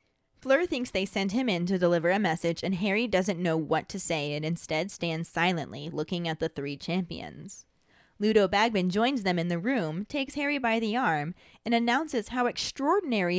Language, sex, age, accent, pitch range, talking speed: English, female, 20-39, American, 160-225 Hz, 190 wpm